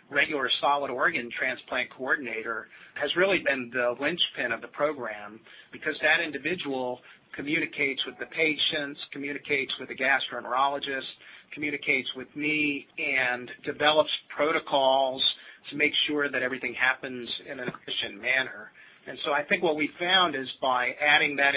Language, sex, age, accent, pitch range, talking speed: English, male, 40-59, American, 125-150 Hz, 140 wpm